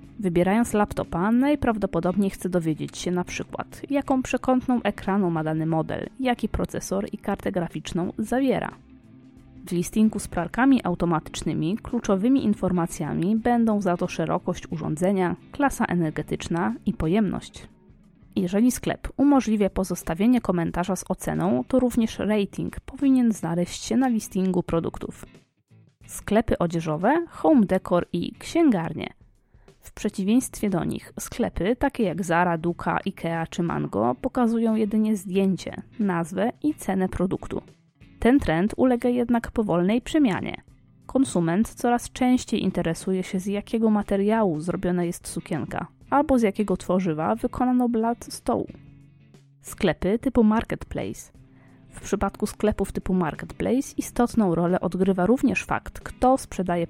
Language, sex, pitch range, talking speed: Polish, female, 175-235 Hz, 120 wpm